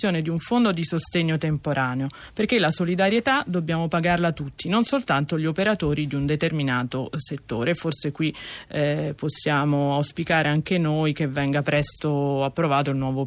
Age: 30-49